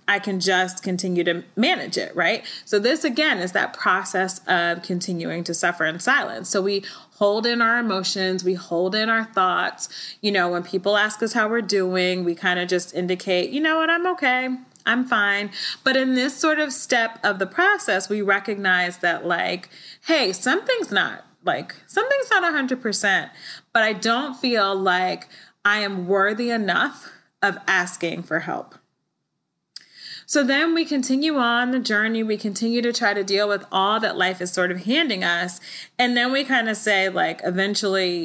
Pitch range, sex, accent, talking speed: 185-250 Hz, female, American, 180 wpm